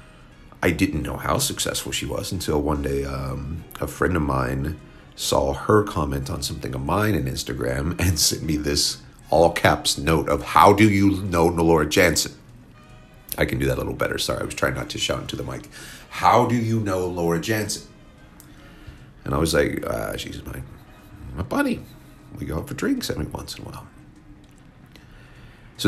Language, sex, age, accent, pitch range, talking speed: English, male, 40-59, American, 70-100 Hz, 190 wpm